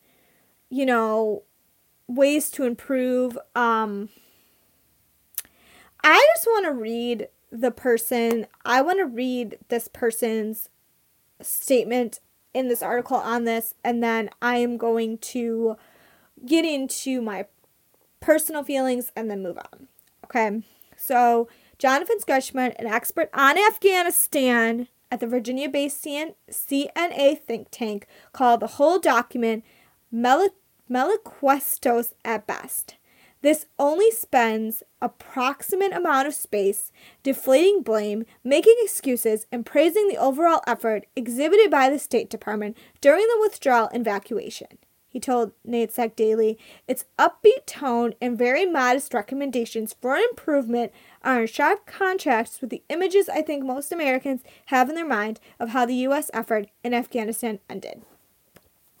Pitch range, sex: 230-285 Hz, female